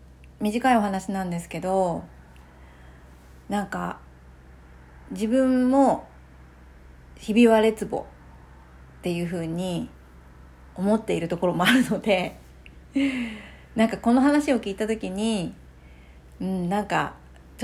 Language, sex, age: Japanese, female, 40-59